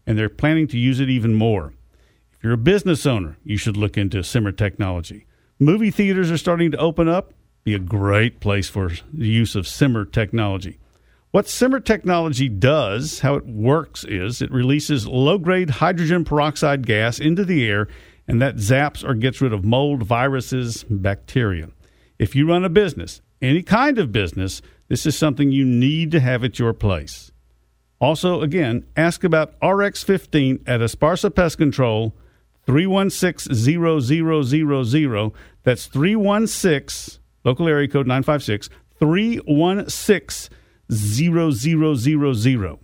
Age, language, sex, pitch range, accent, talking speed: 50-69, English, male, 105-155 Hz, American, 135 wpm